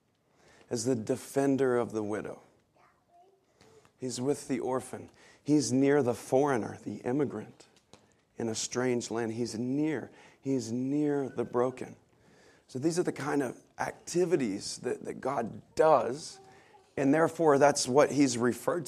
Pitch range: 115-145 Hz